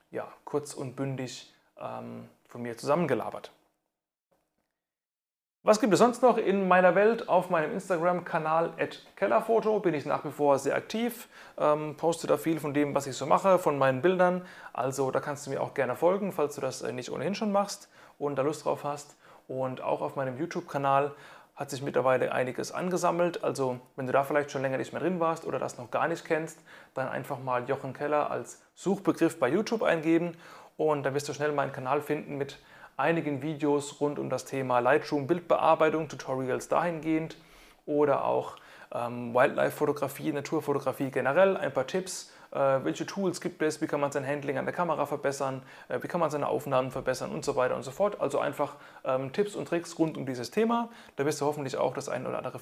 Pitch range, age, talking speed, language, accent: 135-170 Hz, 30-49, 195 wpm, German, German